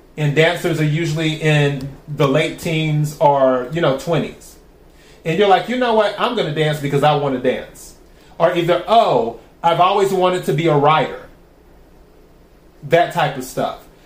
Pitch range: 145-175 Hz